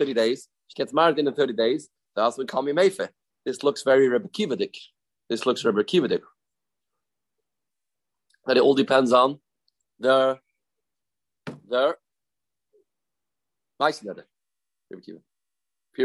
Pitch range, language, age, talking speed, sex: 140-195 Hz, English, 30-49, 115 wpm, male